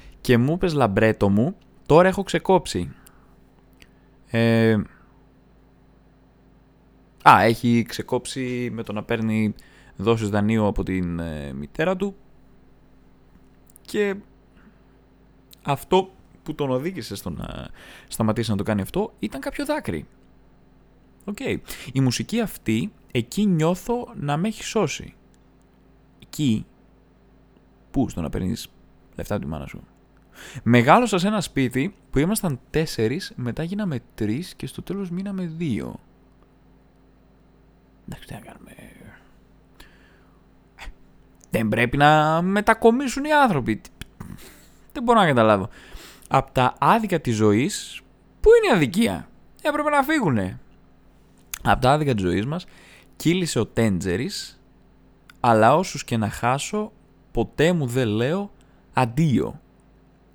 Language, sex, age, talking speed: Greek, male, 20-39, 115 wpm